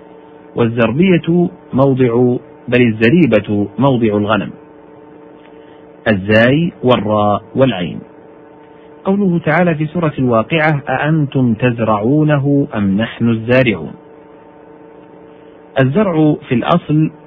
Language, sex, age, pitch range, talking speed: Arabic, male, 50-69, 120-150 Hz, 75 wpm